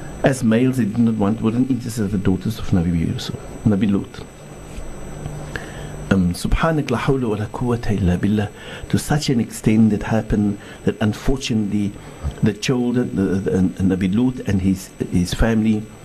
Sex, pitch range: male, 100-130 Hz